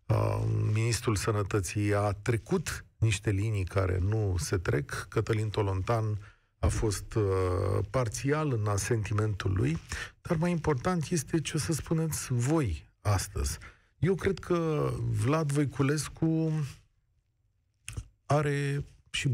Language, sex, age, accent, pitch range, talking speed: Romanian, male, 40-59, native, 105-135 Hz, 110 wpm